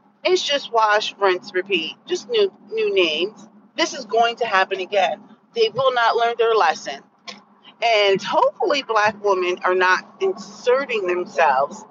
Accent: American